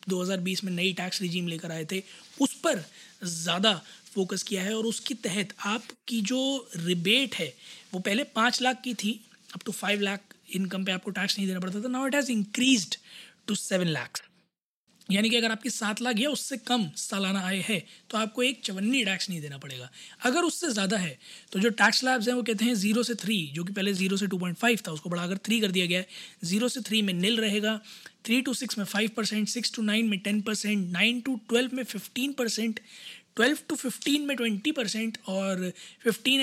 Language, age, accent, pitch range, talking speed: Hindi, 20-39, native, 190-235 Hz, 205 wpm